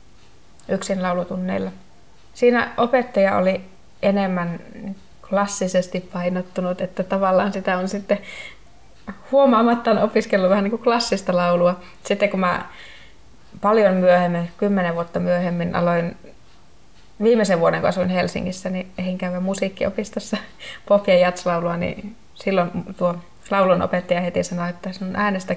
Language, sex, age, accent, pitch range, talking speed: Finnish, female, 20-39, native, 180-205 Hz, 115 wpm